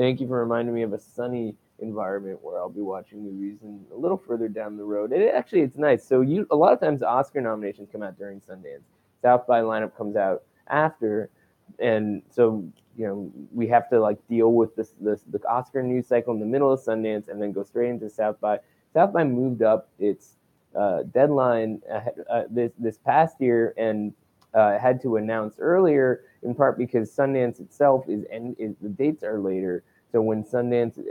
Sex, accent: male, American